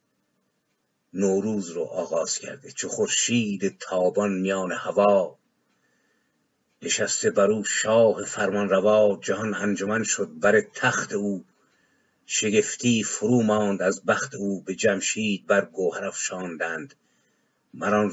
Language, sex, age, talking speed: Persian, male, 50-69, 105 wpm